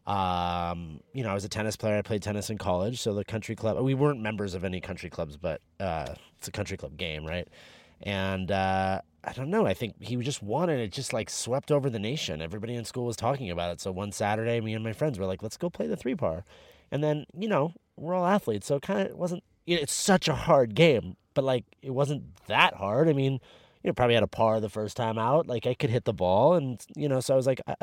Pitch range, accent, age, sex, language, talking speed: 100-140 Hz, American, 30-49, male, English, 265 wpm